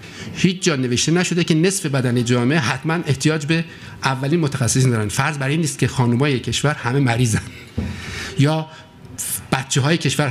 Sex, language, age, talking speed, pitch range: male, Persian, 50-69, 155 wpm, 120-160 Hz